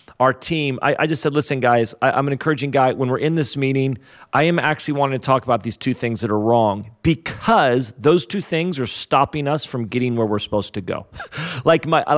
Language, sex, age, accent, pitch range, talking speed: English, male, 40-59, American, 120-155 Hz, 215 wpm